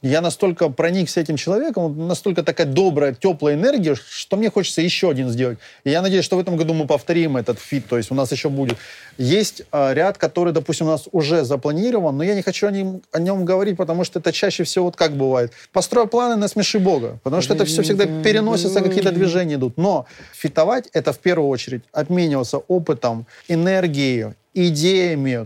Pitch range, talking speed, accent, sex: 135-180 Hz, 200 wpm, native, male